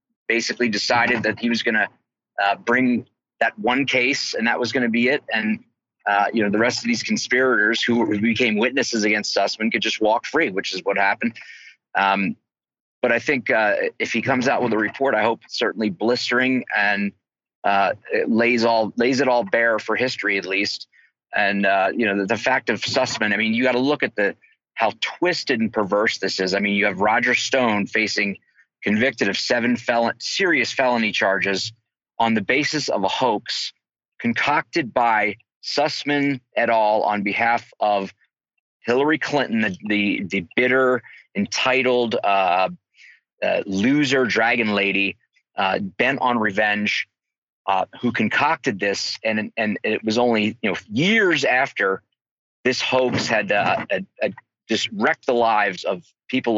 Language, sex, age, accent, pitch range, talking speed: English, male, 30-49, American, 105-125 Hz, 175 wpm